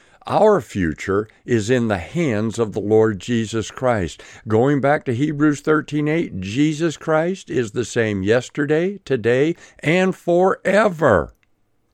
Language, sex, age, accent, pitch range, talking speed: English, male, 60-79, American, 105-155 Hz, 130 wpm